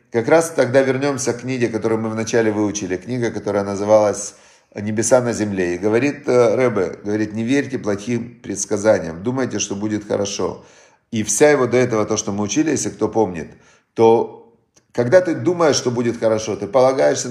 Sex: male